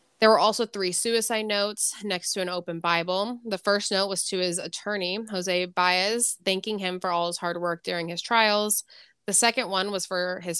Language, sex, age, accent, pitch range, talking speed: English, female, 20-39, American, 180-205 Hz, 205 wpm